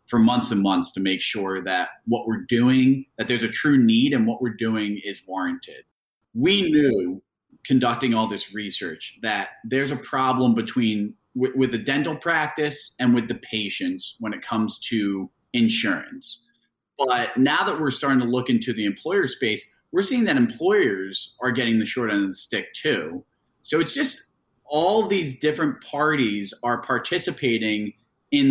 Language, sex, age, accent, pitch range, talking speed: English, male, 30-49, American, 105-145 Hz, 170 wpm